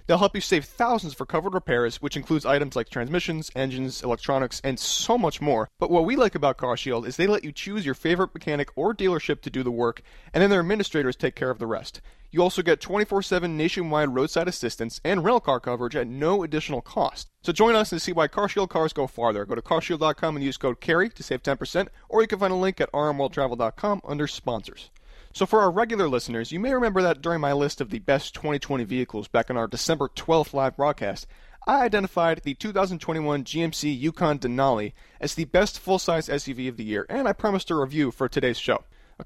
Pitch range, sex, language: 135-185 Hz, male, English